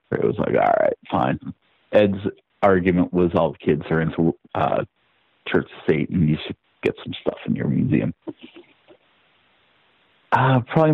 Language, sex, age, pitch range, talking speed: English, male, 40-59, 100-125 Hz, 155 wpm